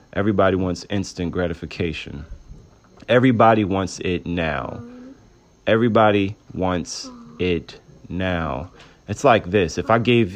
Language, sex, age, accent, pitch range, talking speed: English, male, 30-49, American, 90-115 Hz, 105 wpm